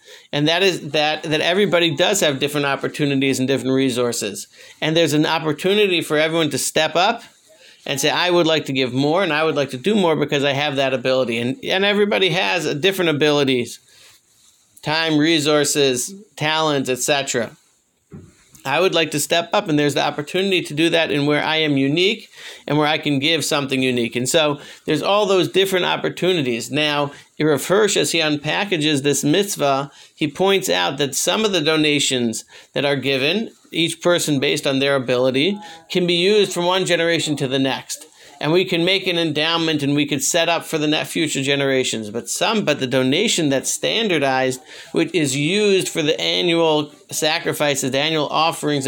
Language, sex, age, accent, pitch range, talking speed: English, male, 50-69, American, 140-170 Hz, 190 wpm